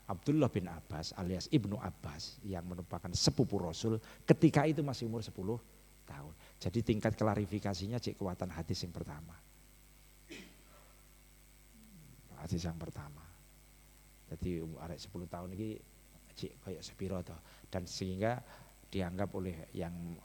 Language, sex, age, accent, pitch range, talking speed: Indonesian, male, 50-69, native, 85-110 Hz, 120 wpm